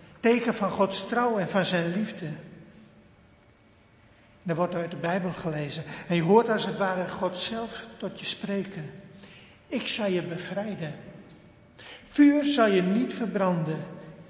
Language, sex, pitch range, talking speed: Dutch, male, 170-215 Hz, 145 wpm